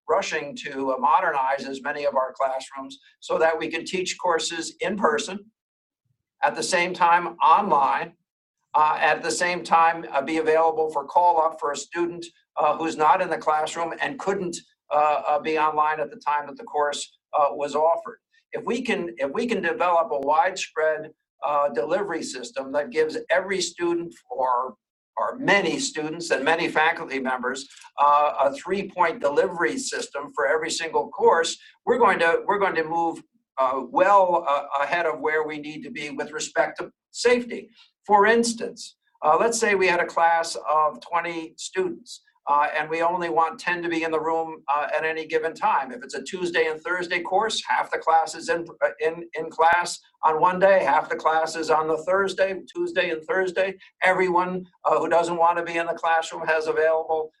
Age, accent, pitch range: 60-79, American, 155-195 Hz